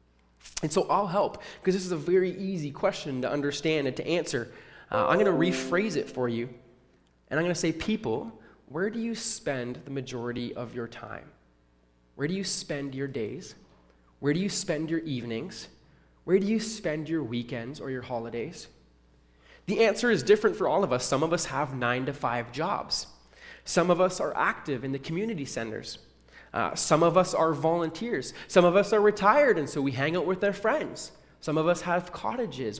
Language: English